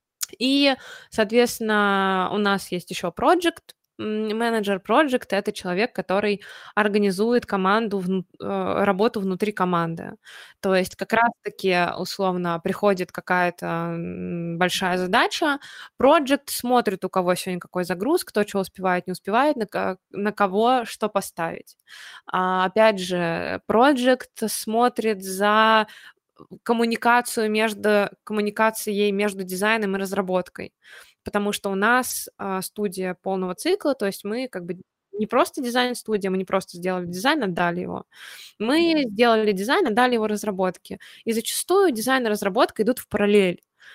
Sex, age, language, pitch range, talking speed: female, 20-39, Russian, 190-245 Hz, 120 wpm